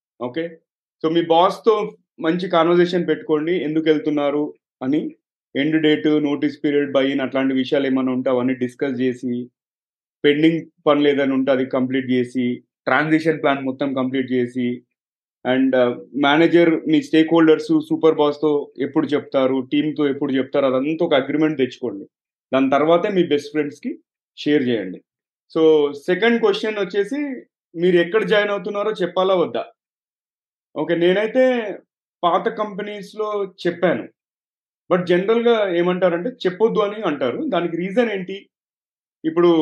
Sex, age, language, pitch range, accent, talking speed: male, 30-49, Telugu, 145-185 Hz, native, 125 wpm